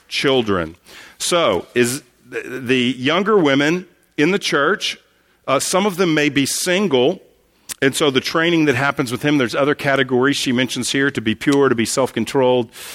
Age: 50-69